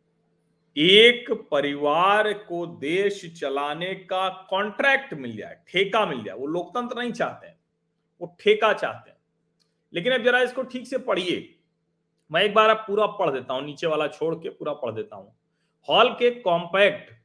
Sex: male